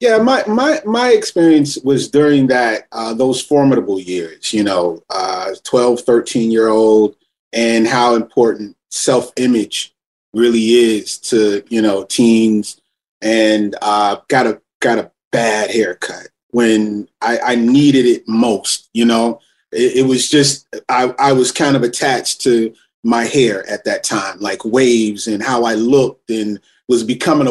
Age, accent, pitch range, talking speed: 30-49, American, 110-130 Hz, 155 wpm